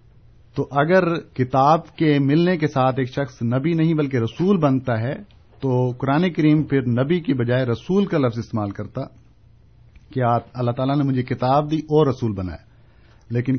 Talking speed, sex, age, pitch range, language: 170 wpm, male, 50-69, 115-135 Hz, Urdu